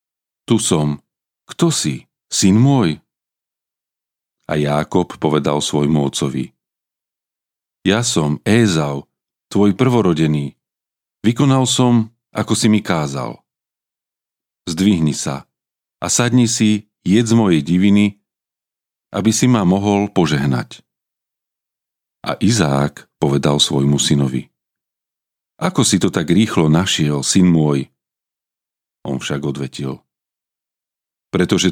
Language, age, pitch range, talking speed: Slovak, 40-59, 70-110 Hz, 100 wpm